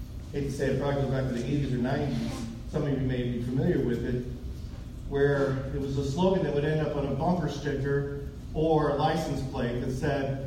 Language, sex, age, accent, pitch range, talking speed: English, male, 40-59, American, 140-185 Hz, 225 wpm